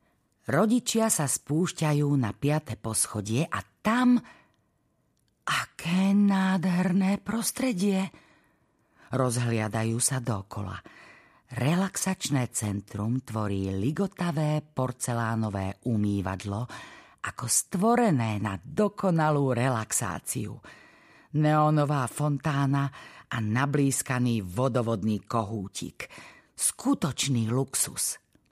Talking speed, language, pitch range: 70 wpm, Slovak, 105-150 Hz